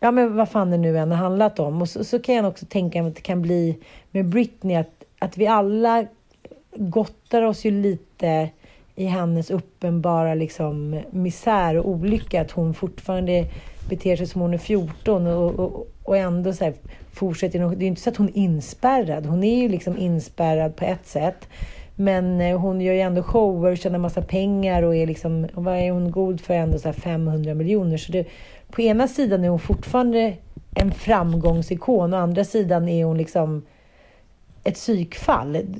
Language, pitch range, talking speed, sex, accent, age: Swedish, 170-215 Hz, 190 wpm, female, native, 40-59